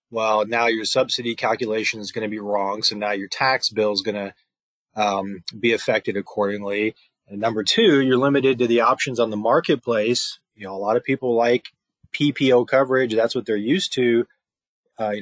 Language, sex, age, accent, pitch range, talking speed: English, male, 20-39, American, 105-125 Hz, 185 wpm